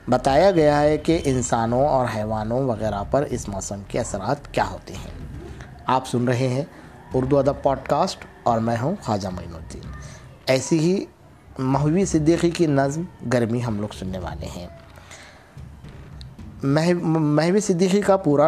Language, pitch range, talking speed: Urdu, 115-150 Hz, 150 wpm